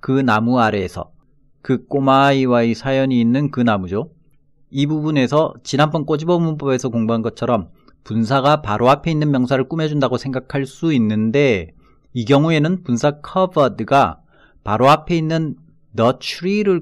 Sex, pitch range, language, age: male, 120-160 Hz, Korean, 40-59